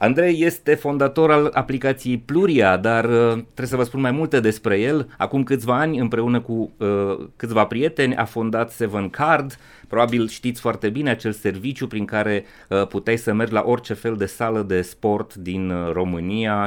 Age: 30-49